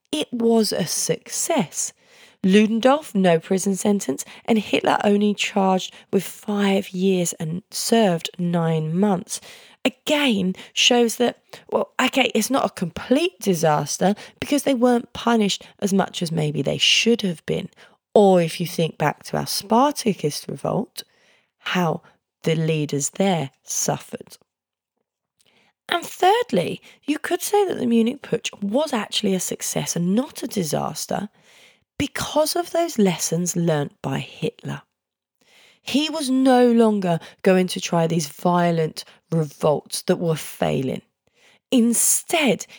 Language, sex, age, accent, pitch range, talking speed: English, female, 20-39, British, 170-235 Hz, 130 wpm